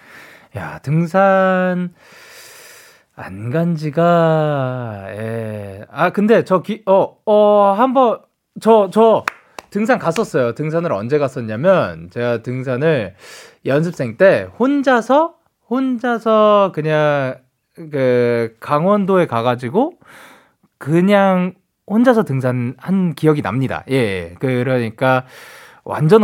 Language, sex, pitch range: Korean, male, 120-195 Hz